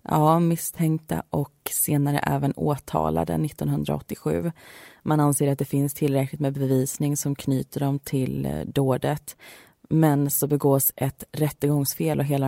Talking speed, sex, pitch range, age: 130 wpm, female, 130-150 Hz, 20-39